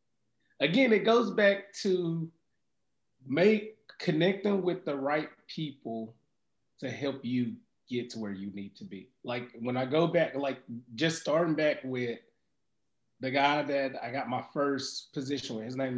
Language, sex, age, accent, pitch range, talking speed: English, male, 30-49, American, 125-175 Hz, 160 wpm